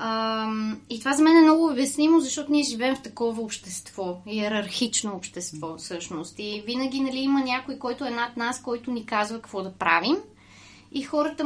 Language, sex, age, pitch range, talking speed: Bulgarian, female, 20-39, 220-280 Hz, 175 wpm